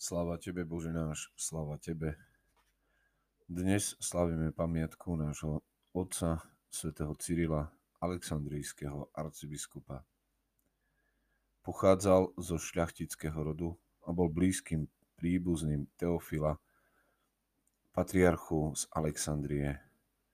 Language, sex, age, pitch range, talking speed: Slovak, male, 30-49, 75-85 Hz, 80 wpm